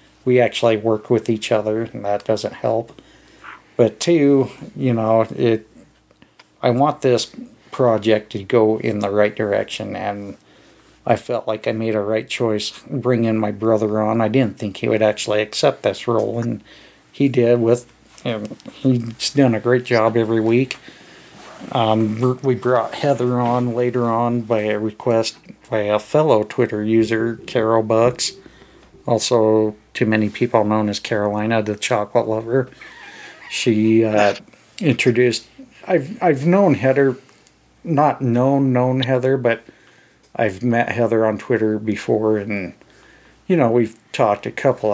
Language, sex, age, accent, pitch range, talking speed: English, male, 50-69, American, 105-125 Hz, 150 wpm